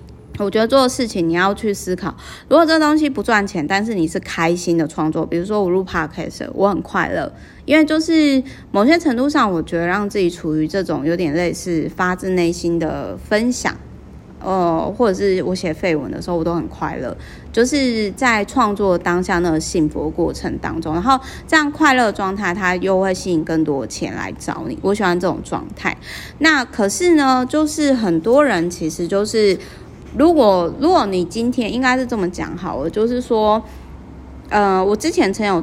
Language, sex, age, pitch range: Chinese, female, 30-49, 170-215 Hz